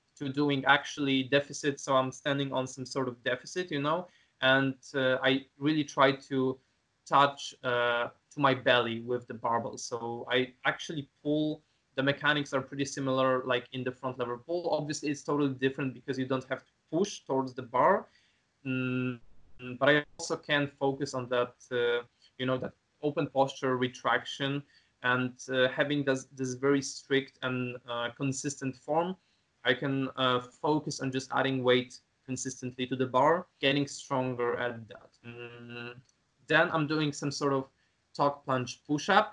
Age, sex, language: 20-39, male, French